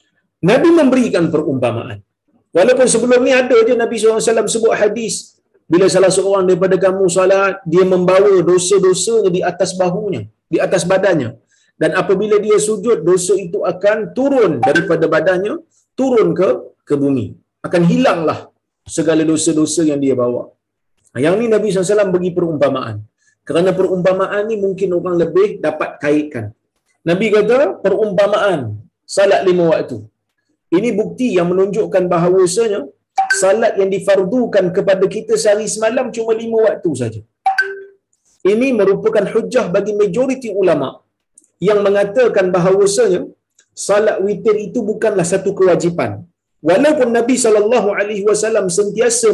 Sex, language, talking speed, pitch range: male, Malayalam, 135 wpm, 175-220 Hz